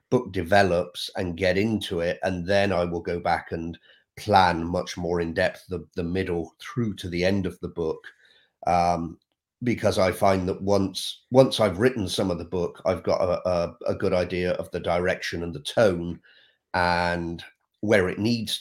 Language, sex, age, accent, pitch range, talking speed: English, male, 40-59, British, 85-100 Hz, 185 wpm